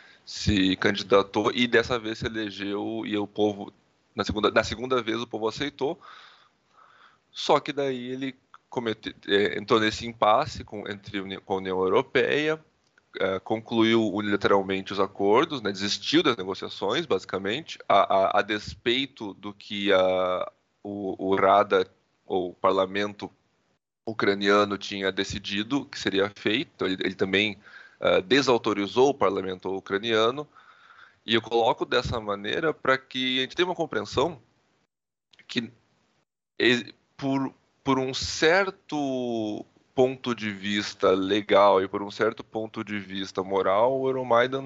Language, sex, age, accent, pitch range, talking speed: Portuguese, male, 20-39, Brazilian, 100-120 Hz, 140 wpm